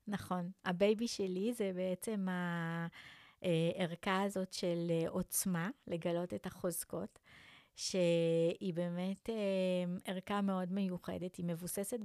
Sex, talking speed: female, 95 wpm